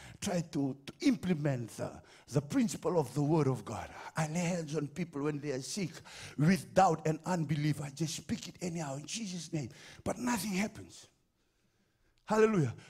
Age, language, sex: 60-79, English, male